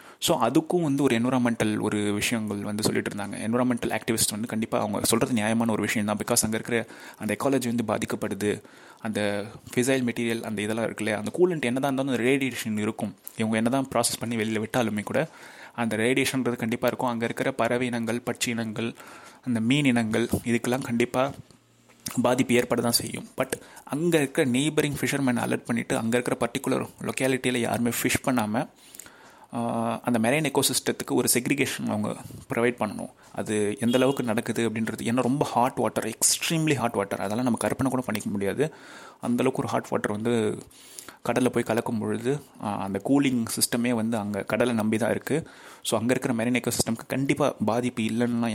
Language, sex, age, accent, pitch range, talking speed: Tamil, male, 30-49, native, 110-125 Hz, 160 wpm